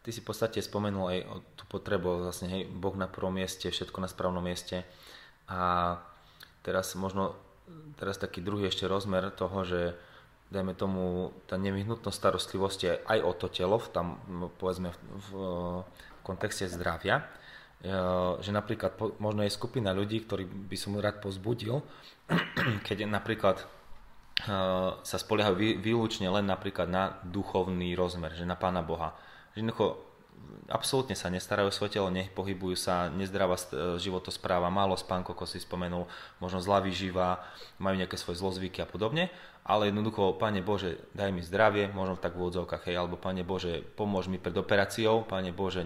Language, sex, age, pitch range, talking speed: Slovak, male, 20-39, 90-100 Hz, 155 wpm